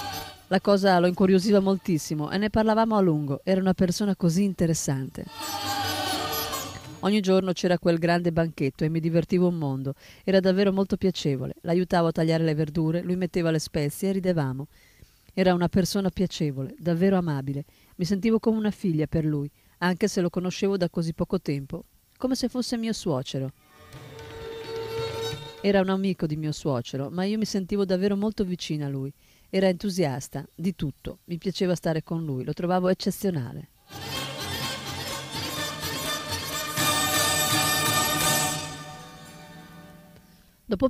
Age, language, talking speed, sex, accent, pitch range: 40-59, Italian, 140 wpm, female, native, 150-190 Hz